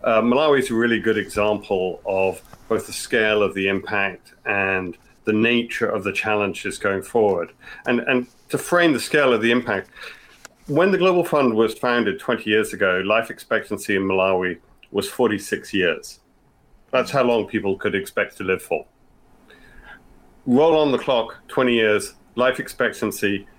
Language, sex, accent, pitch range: English, male, British, 100-130 Hz